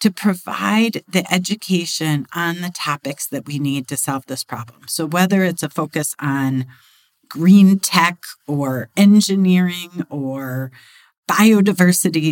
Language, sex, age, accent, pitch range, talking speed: English, female, 50-69, American, 155-210 Hz, 125 wpm